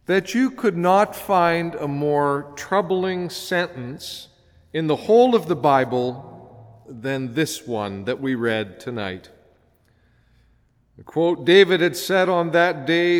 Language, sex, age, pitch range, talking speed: English, male, 50-69, 125-185 Hz, 130 wpm